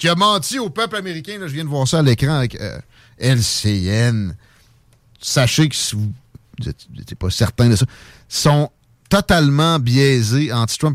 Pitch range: 115-150 Hz